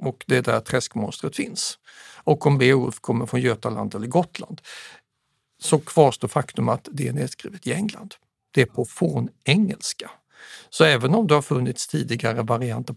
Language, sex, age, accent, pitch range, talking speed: Swedish, male, 60-79, native, 120-185 Hz, 165 wpm